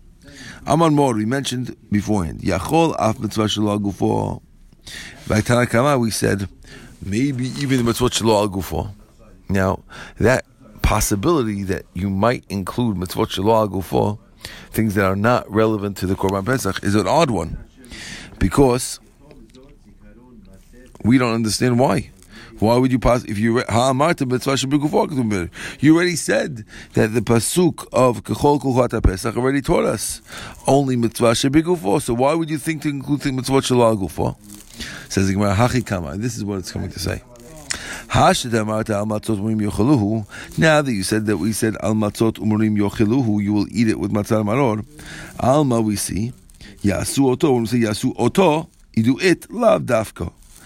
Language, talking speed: English, 150 wpm